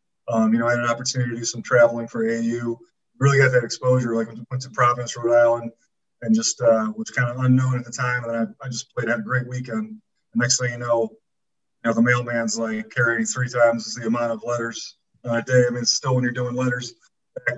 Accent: American